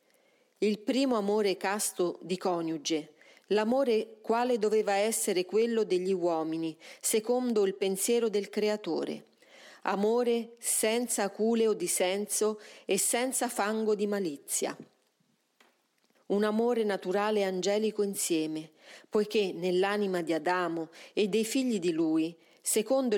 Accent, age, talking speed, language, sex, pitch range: native, 40-59, 115 wpm, Italian, female, 180-230 Hz